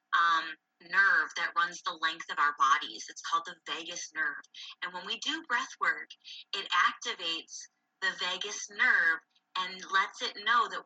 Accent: American